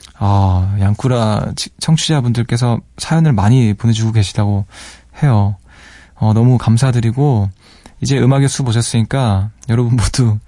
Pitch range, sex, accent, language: 100-135 Hz, male, native, Korean